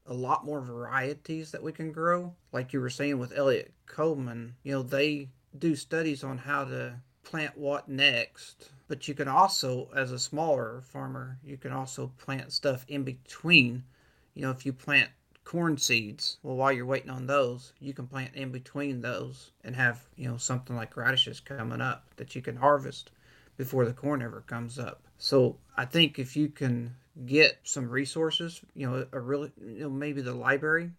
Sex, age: male, 40-59